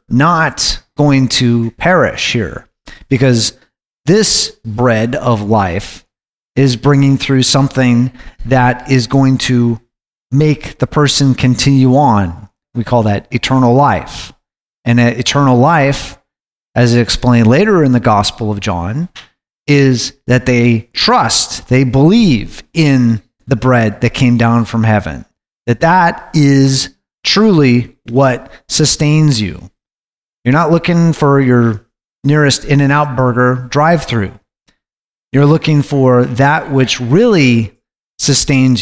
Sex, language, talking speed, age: male, English, 115 wpm, 30-49